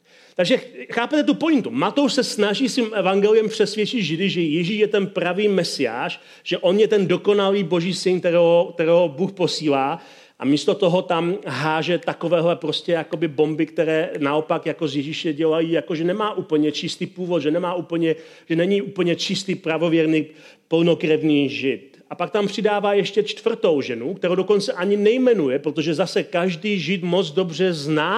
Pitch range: 155-190 Hz